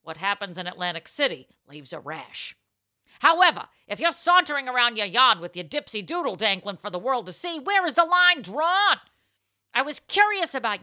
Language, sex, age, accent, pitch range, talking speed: English, female, 50-69, American, 180-295 Hz, 185 wpm